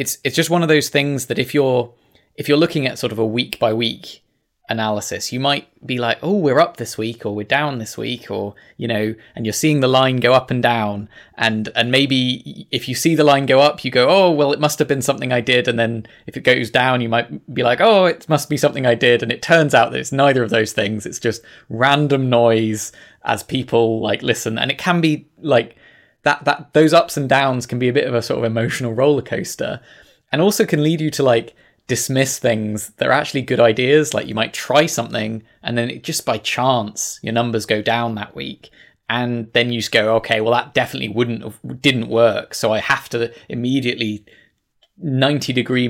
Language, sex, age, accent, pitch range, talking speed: English, male, 20-39, British, 115-140 Hz, 230 wpm